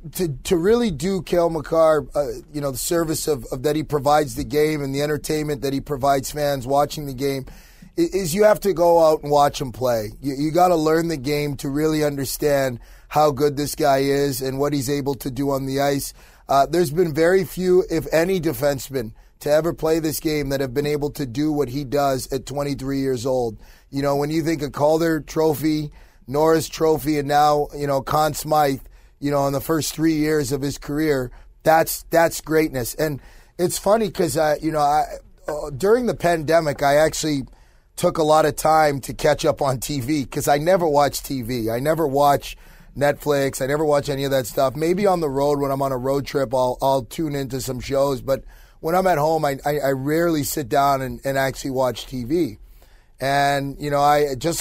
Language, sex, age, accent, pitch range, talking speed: English, male, 30-49, American, 140-160 Hz, 215 wpm